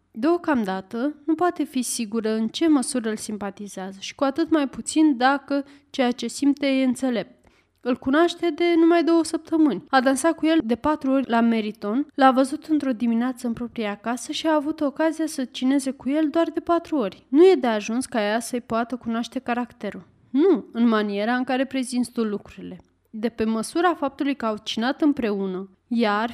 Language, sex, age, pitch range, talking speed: Romanian, female, 20-39, 225-300 Hz, 185 wpm